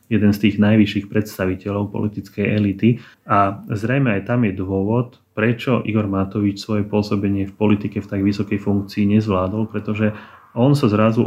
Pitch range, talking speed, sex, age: 100-110 Hz, 160 wpm, male, 30-49